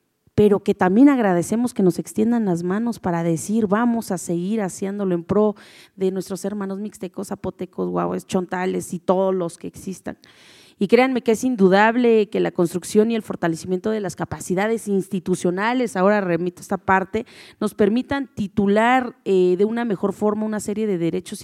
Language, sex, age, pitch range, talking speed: Spanish, female, 30-49, 185-240 Hz, 165 wpm